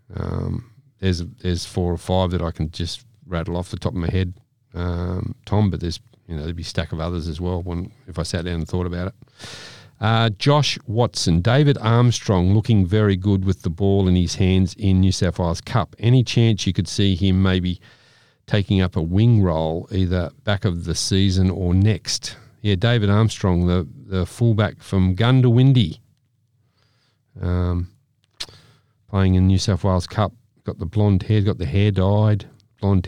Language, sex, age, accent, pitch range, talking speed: English, male, 40-59, Australian, 90-115 Hz, 190 wpm